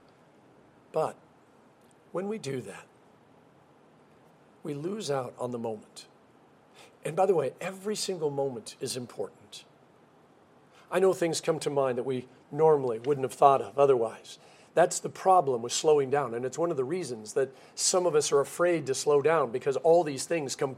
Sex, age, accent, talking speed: male, 50-69, American, 175 wpm